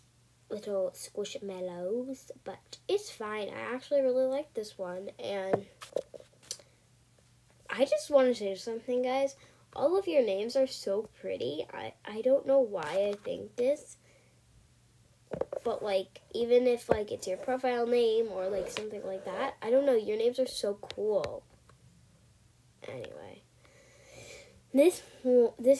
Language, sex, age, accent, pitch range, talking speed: English, female, 10-29, American, 195-290 Hz, 135 wpm